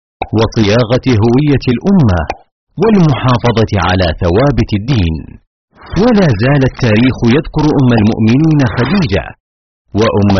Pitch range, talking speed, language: 100-140 Hz, 85 wpm, Arabic